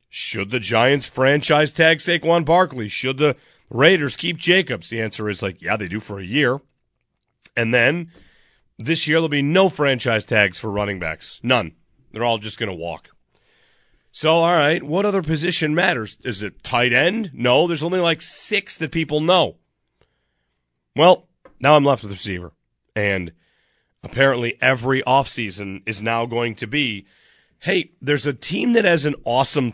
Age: 40-59